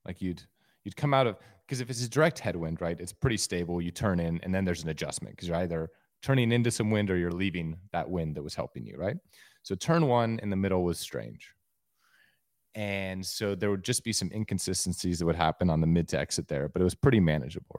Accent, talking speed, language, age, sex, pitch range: American, 240 wpm, English, 30-49, male, 85-110 Hz